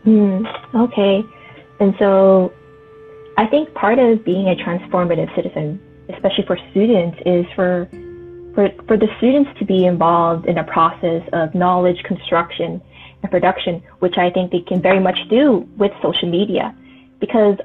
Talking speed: 150 wpm